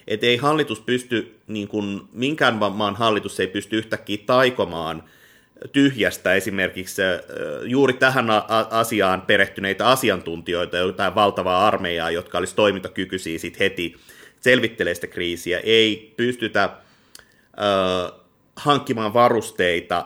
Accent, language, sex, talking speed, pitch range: native, Finnish, male, 110 wpm, 100-130 Hz